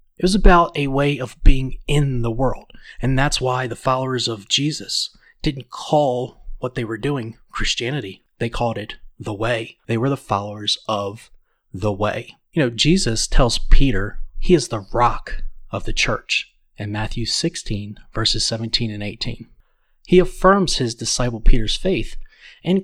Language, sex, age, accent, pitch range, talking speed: English, male, 30-49, American, 115-145 Hz, 165 wpm